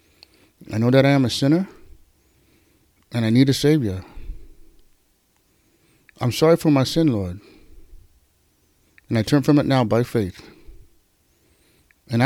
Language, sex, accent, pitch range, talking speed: English, male, American, 110-155 Hz, 130 wpm